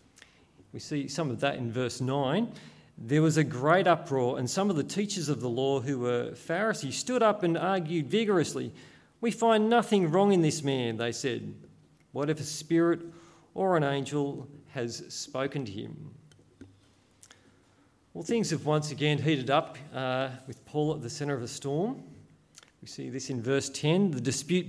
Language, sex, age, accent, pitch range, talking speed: English, male, 40-59, Australian, 130-160 Hz, 175 wpm